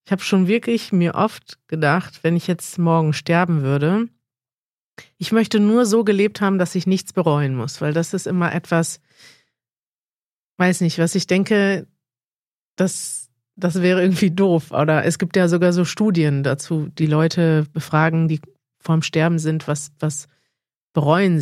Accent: German